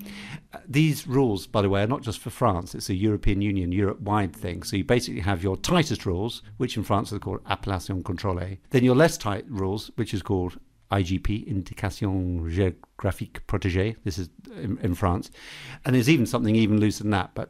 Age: 50-69